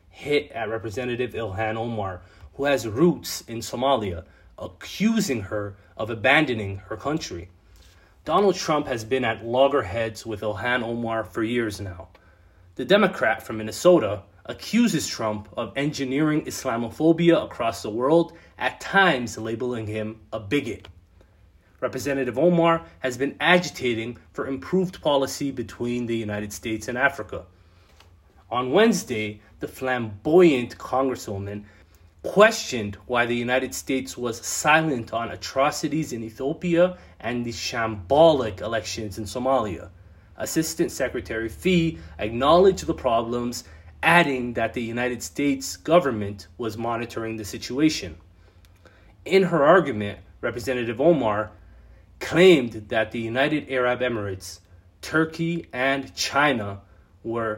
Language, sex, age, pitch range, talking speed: English, male, 30-49, 100-135 Hz, 120 wpm